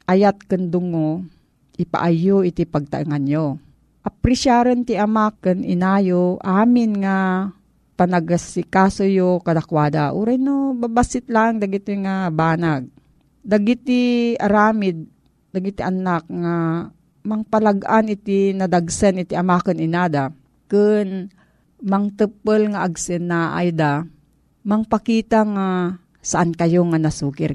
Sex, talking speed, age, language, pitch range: female, 100 wpm, 40-59, Filipino, 170-210 Hz